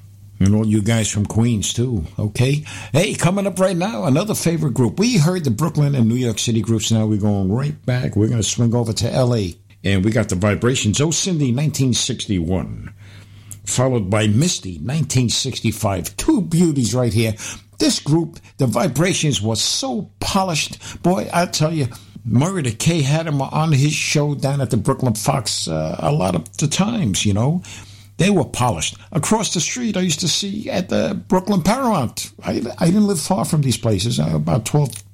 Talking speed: 190 wpm